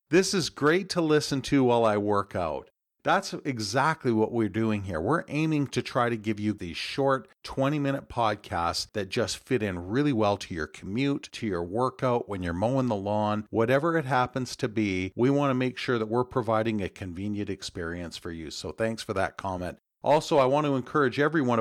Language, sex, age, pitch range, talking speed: English, male, 40-59, 100-140 Hz, 205 wpm